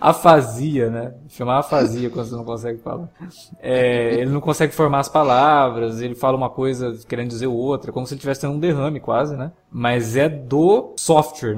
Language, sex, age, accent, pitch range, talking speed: Portuguese, male, 20-39, Brazilian, 130-165 Hz, 190 wpm